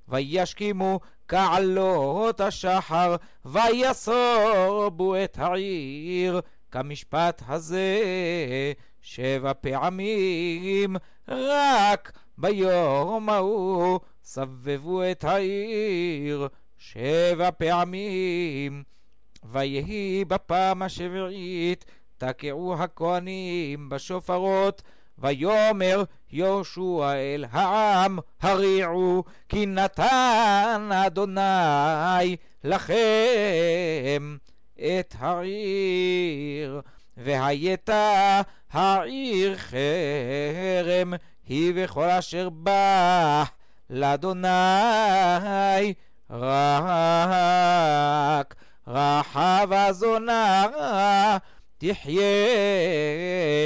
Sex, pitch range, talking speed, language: male, 150-195 Hz, 55 wpm, Hebrew